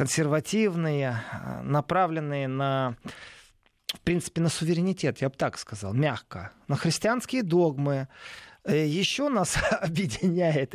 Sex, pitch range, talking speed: male, 140-200 Hz, 100 wpm